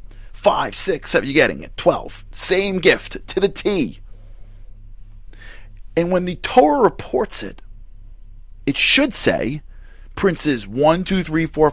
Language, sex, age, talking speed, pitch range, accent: English, male, 30-49, 135 wpm, 100-155 Hz, American